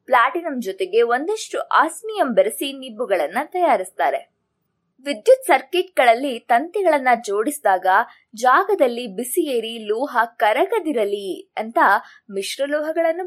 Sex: female